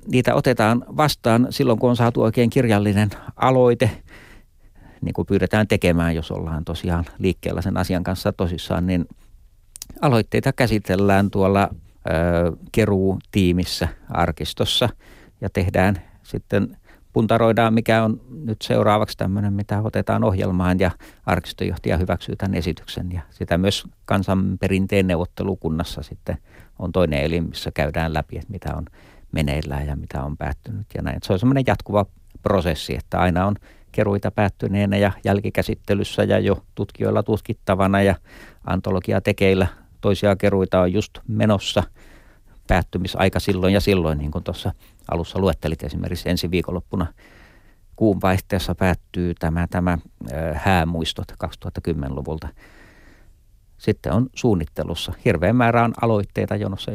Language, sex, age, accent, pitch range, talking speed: Finnish, male, 50-69, native, 90-105 Hz, 125 wpm